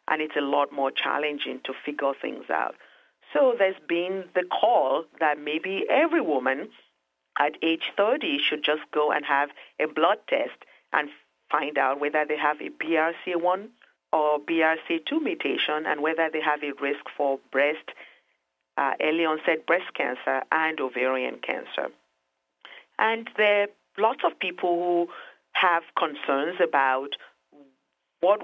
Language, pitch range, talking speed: English, 140-170 Hz, 145 wpm